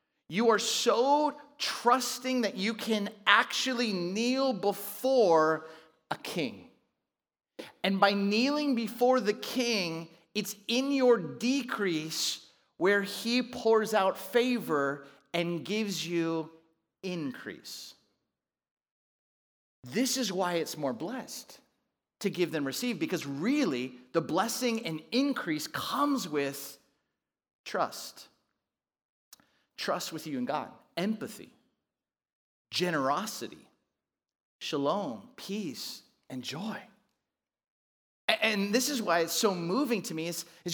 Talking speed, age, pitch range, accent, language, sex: 105 wpm, 30-49, 170-245 Hz, American, English, male